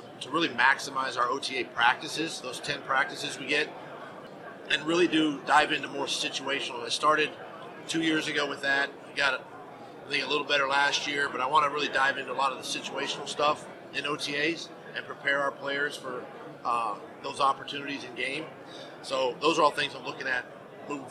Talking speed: 190 wpm